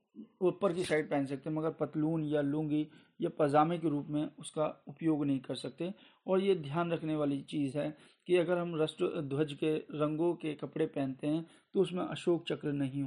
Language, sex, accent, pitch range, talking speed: Hindi, male, native, 140-160 Hz, 195 wpm